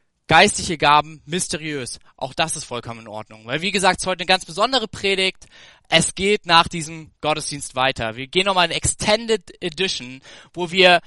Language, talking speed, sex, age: German, 180 wpm, male, 20-39